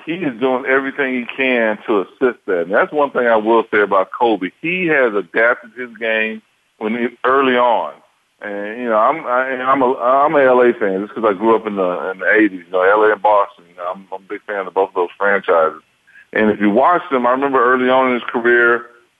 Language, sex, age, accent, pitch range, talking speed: English, male, 40-59, American, 105-125 Hz, 240 wpm